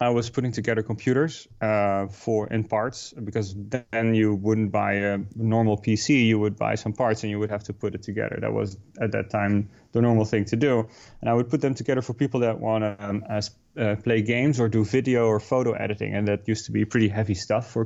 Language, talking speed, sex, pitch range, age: English, 235 wpm, male, 105-115 Hz, 30-49